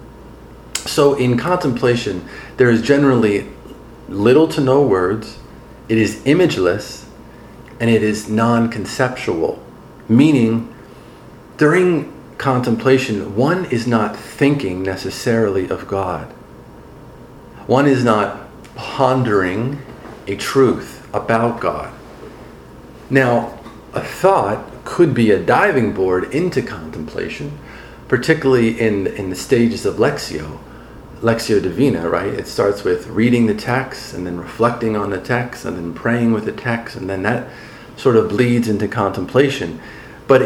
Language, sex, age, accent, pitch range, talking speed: English, male, 40-59, American, 110-135 Hz, 120 wpm